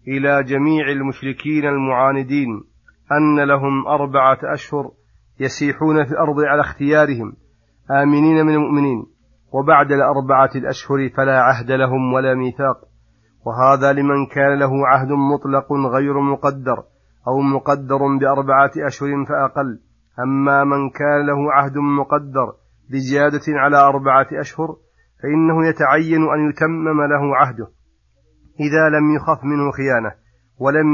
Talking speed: 115 wpm